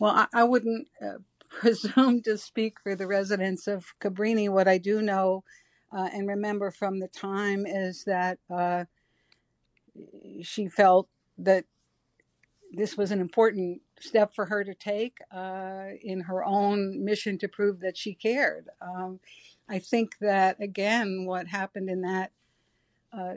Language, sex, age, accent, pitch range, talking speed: English, female, 60-79, American, 190-215 Hz, 150 wpm